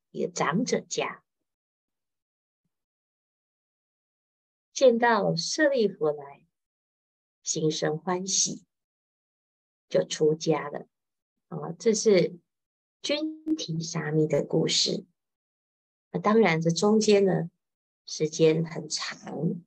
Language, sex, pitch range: Chinese, female, 155-200 Hz